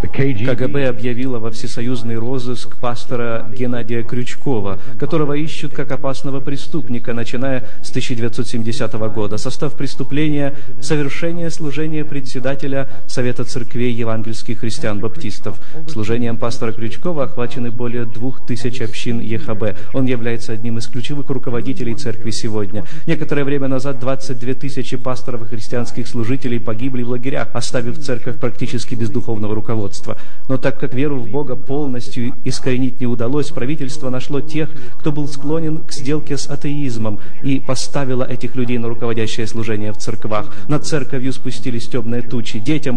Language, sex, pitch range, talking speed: Russian, male, 120-140 Hz, 135 wpm